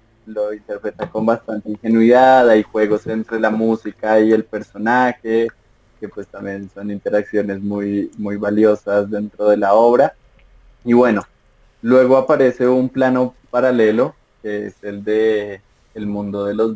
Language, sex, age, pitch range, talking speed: Spanish, male, 20-39, 105-115 Hz, 145 wpm